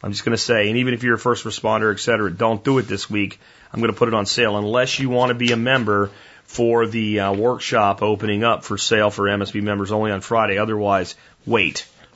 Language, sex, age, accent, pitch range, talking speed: English, male, 30-49, American, 105-120 Hz, 235 wpm